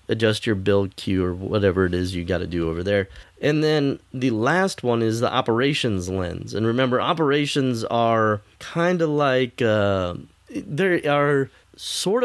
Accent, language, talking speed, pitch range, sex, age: American, English, 160 wpm, 100-135 Hz, male, 20-39